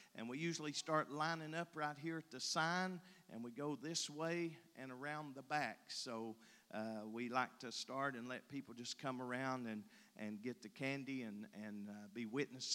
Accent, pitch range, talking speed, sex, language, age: American, 125-170 Hz, 200 wpm, male, English, 50-69